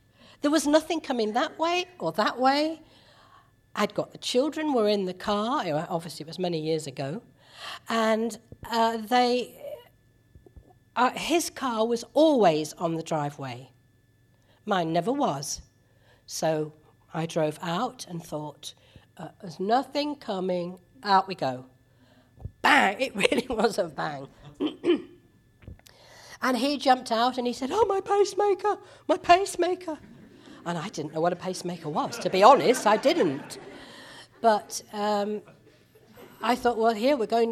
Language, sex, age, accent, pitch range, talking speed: English, female, 50-69, British, 155-245 Hz, 140 wpm